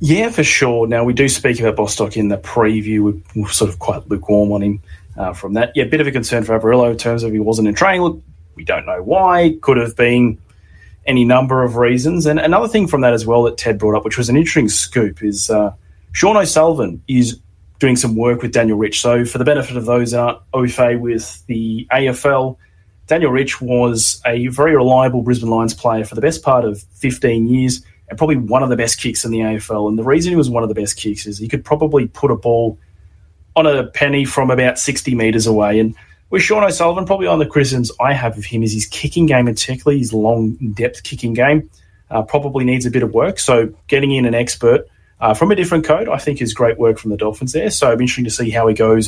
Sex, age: male, 20-39